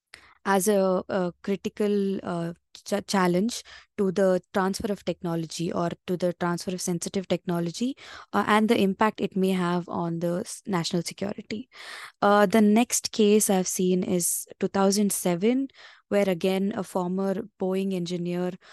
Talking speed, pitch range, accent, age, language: 145 wpm, 180-205 Hz, Indian, 20-39, English